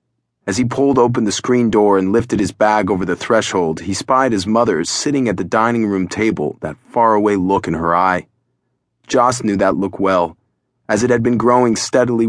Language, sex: English, male